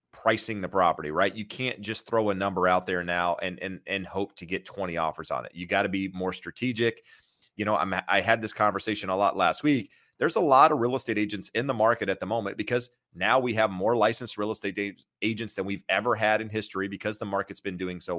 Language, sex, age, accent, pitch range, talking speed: English, male, 30-49, American, 95-120 Hz, 245 wpm